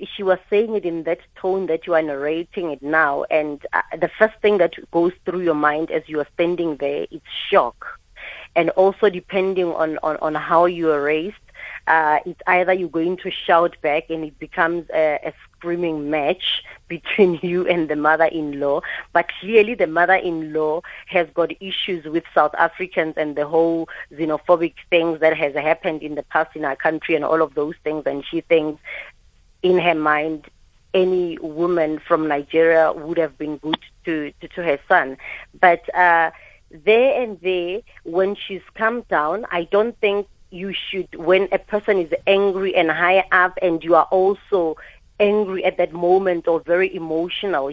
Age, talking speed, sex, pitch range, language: 30-49, 175 wpm, female, 155-185 Hz, English